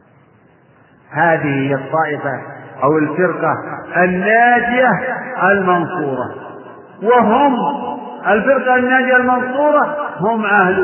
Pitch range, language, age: 160-250 Hz, Arabic, 50-69